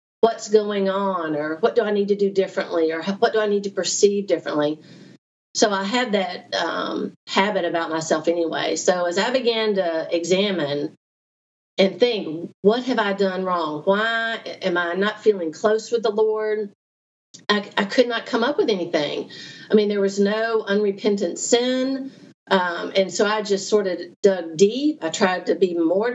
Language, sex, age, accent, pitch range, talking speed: English, female, 40-59, American, 175-215 Hz, 180 wpm